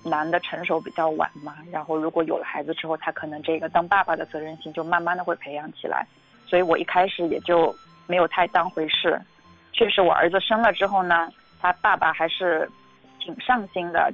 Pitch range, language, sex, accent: 160-185 Hz, Chinese, female, native